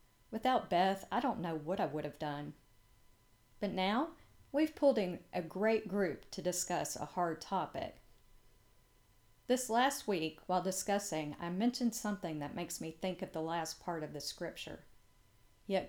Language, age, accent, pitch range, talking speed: English, 50-69, American, 150-200 Hz, 160 wpm